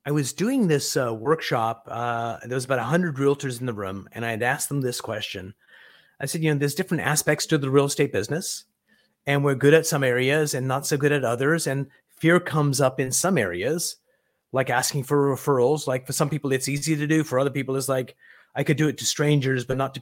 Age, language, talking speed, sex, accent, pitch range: 30-49, English, 240 wpm, male, American, 130-155 Hz